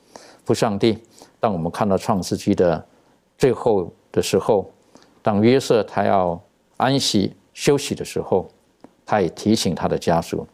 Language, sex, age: Chinese, male, 50-69